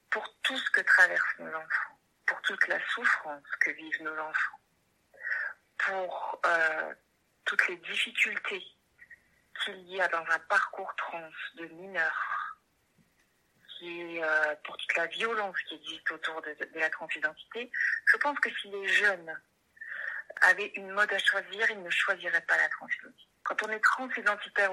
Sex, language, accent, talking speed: female, French, French, 155 wpm